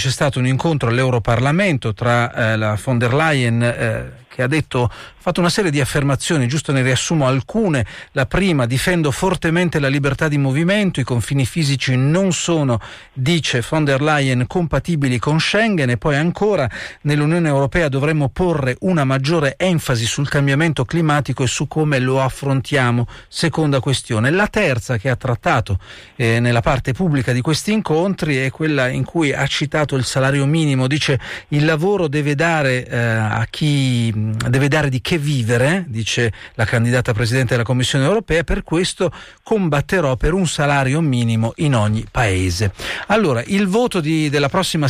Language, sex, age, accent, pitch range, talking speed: Italian, male, 40-59, native, 125-160 Hz, 165 wpm